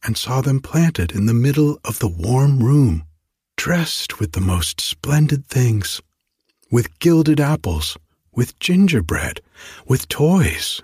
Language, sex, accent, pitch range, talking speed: English, male, American, 90-135 Hz, 135 wpm